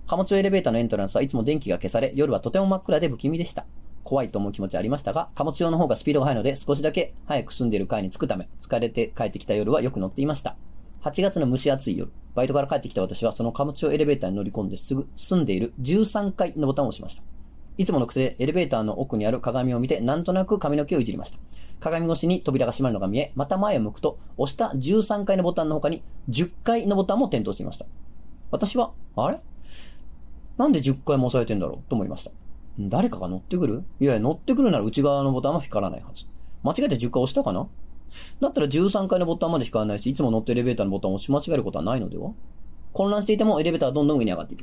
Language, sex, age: Japanese, male, 30-49